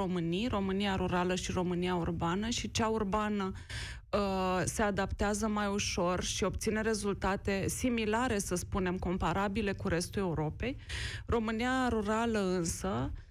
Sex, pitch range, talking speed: female, 180-220 Hz, 115 wpm